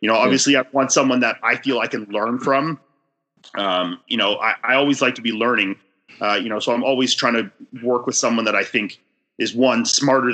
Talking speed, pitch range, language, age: 230 wpm, 110-135 Hz, English, 30-49